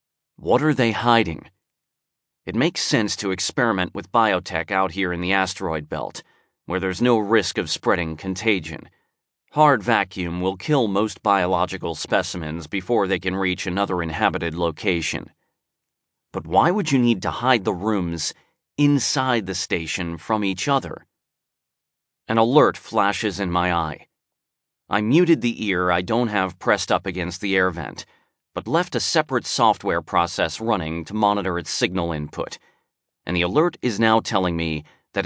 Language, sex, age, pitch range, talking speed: English, male, 30-49, 90-115 Hz, 155 wpm